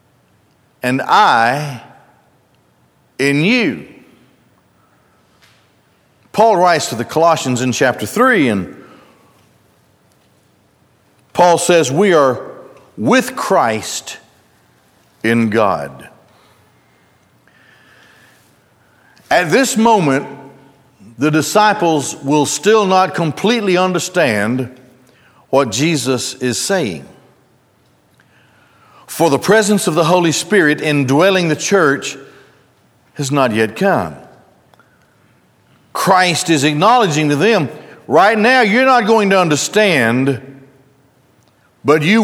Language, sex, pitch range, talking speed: English, male, 135-200 Hz, 90 wpm